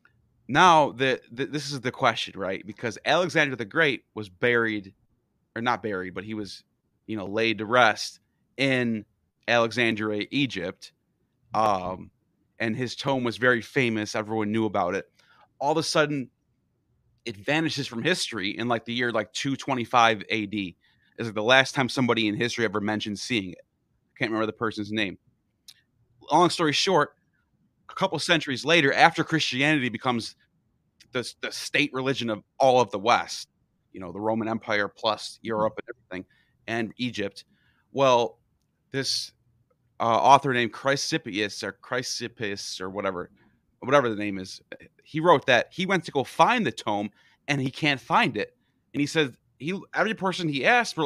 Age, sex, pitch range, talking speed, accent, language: 30-49, male, 110-140 Hz, 165 wpm, American, English